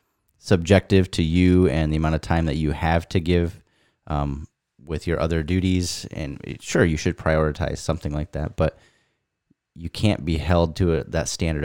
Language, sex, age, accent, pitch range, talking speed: English, male, 30-49, American, 80-110 Hz, 175 wpm